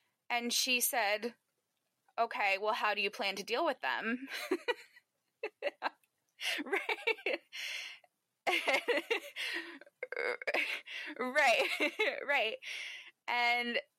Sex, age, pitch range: female, 20-39, 190-265 Hz